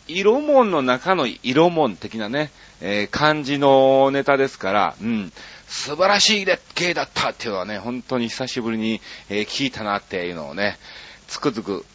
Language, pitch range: Japanese, 105-175 Hz